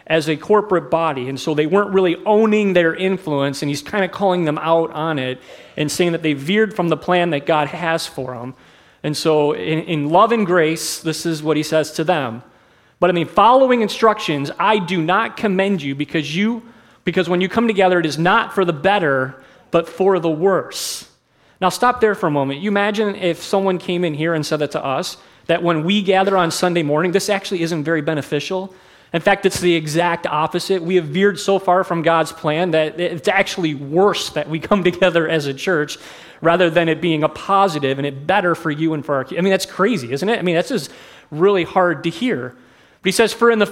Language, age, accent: English, 30-49, American